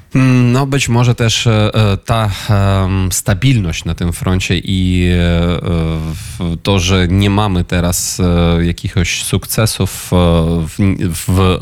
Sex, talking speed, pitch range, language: male, 95 wpm, 85-105 Hz, Polish